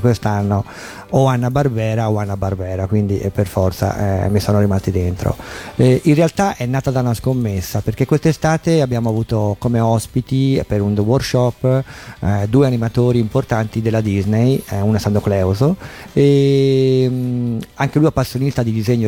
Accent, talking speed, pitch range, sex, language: native, 160 wpm, 105-135 Hz, male, Italian